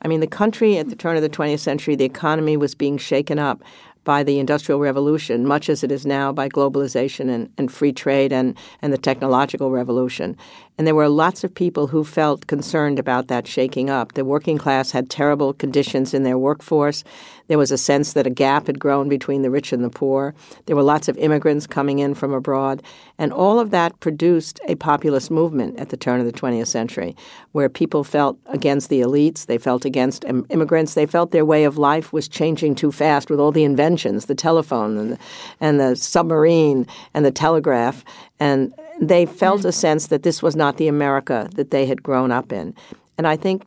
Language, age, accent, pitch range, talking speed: English, 60-79, American, 135-160 Hz, 205 wpm